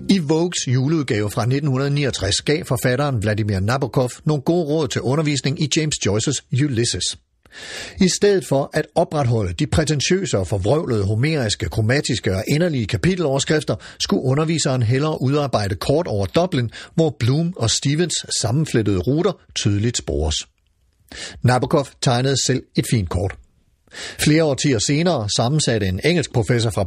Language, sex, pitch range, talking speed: Danish, male, 110-155 Hz, 135 wpm